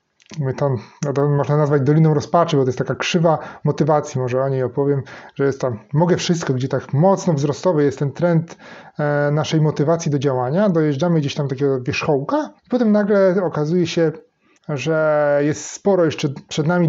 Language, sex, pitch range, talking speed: Polish, male, 145-180 Hz, 160 wpm